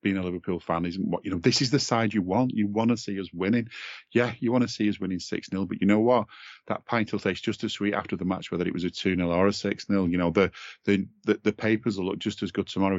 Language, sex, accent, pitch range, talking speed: English, male, British, 85-105 Hz, 290 wpm